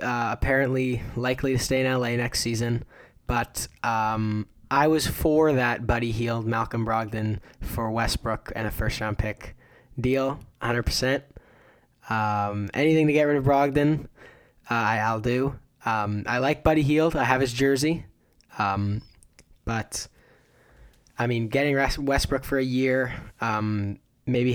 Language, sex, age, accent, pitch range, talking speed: English, male, 10-29, American, 110-130 Hz, 140 wpm